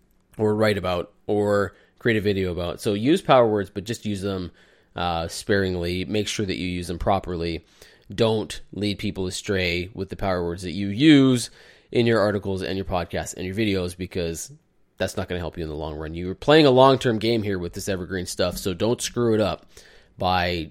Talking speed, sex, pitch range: 210 wpm, male, 90-105 Hz